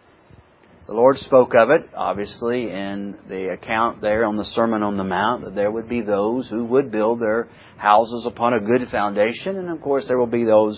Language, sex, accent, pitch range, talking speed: English, male, American, 110-155 Hz, 205 wpm